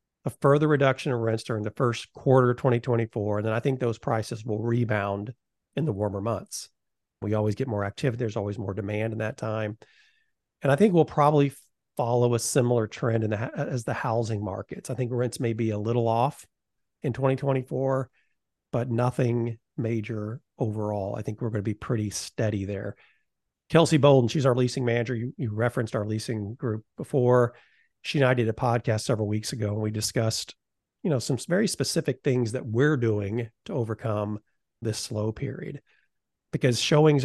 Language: English